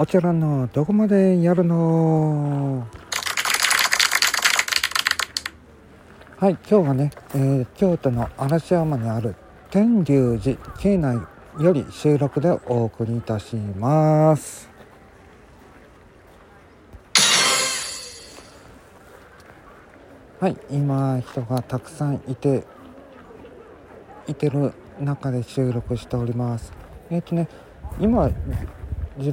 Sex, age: male, 50-69